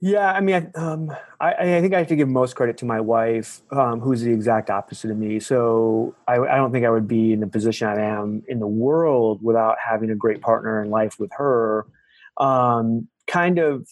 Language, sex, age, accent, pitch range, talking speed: English, male, 30-49, American, 110-130 Hz, 220 wpm